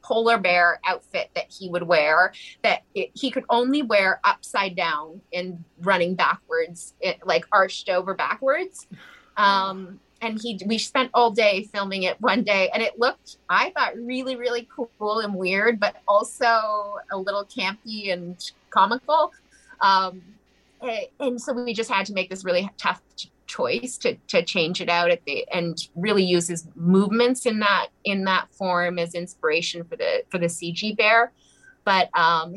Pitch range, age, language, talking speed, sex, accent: 175-240 Hz, 30-49, English, 165 wpm, female, American